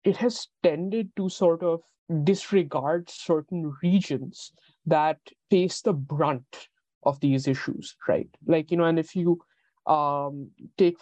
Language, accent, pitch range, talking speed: English, Indian, 150-190 Hz, 135 wpm